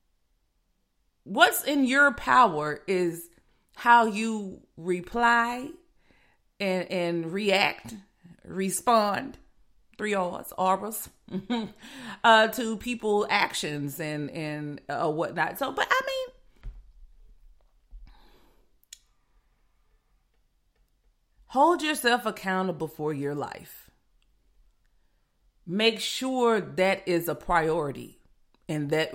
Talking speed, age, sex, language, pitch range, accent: 80 wpm, 40-59, female, English, 165-235 Hz, American